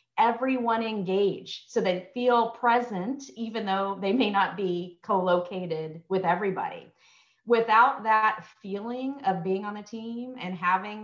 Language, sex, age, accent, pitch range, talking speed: English, female, 40-59, American, 170-225 Hz, 135 wpm